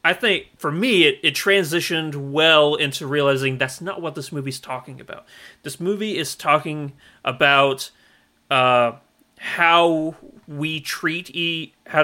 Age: 30-49